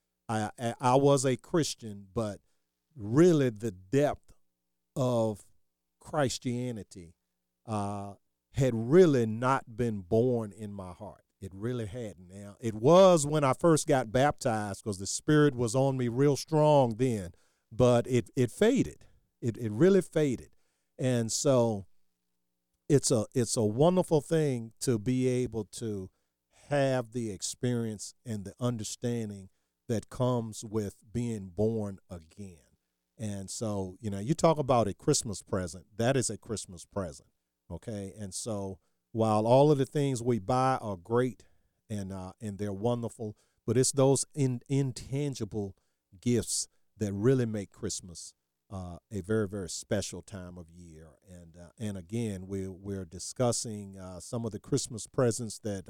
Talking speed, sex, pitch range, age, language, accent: 145 wpm, male, 95-125 Hz, 50-69, English, American